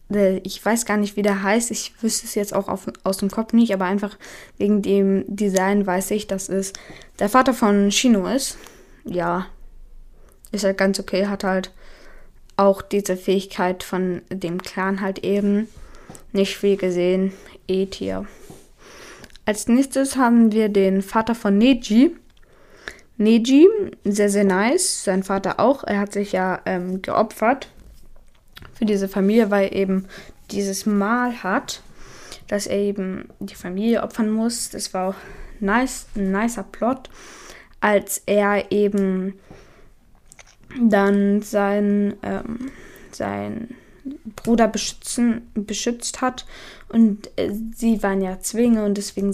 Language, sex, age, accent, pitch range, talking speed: German, female, 20-39, German, 195-230 Hz, 135 wpm